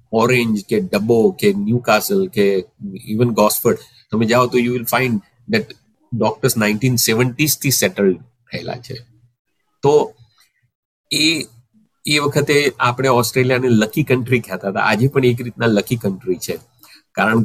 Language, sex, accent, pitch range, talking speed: Gujarati, male, native, 105-130 Hz, 135 wpm